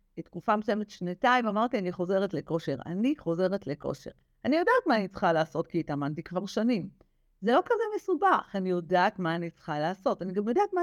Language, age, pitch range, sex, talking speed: Hebrew, 50-69, 175-235 Hz, female, 190 wpm